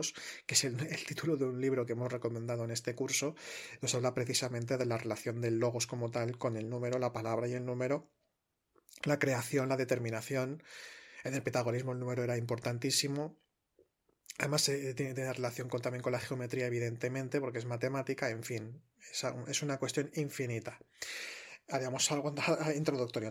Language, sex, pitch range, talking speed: Spanish, male, 125-160 Hz, 170 wpm